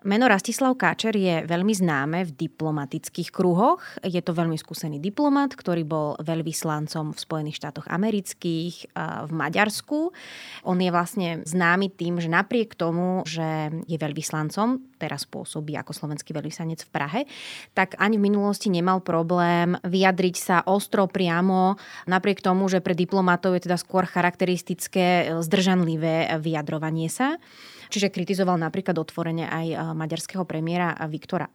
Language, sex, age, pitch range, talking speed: Slovak, female, 20-39, 165-195 Hz, 135 wpm